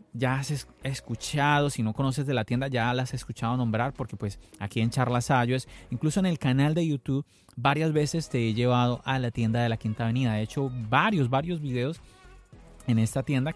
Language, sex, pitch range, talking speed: Spanish, male, 110-140 Hz, 205 wpm